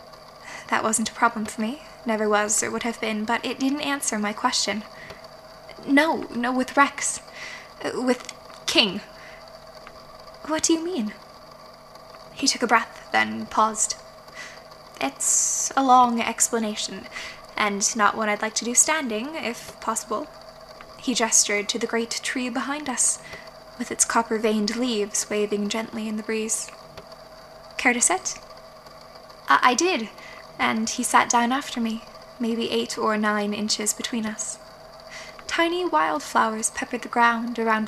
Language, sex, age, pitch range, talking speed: English, female, 10-29, 215-250 Hz, 145 wpm